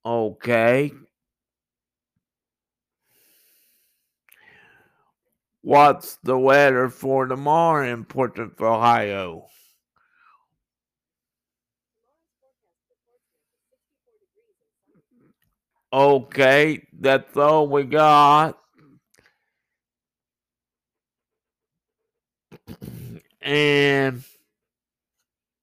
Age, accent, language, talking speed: 50-69, American, English, 35 wpm